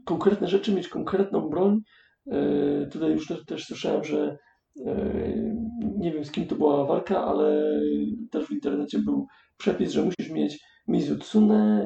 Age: 40-59